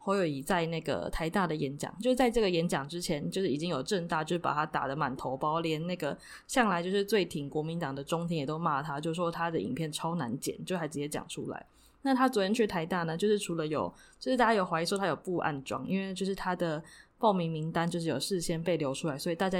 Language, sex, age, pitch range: Chinese, female, 20-39, 155-195 Hz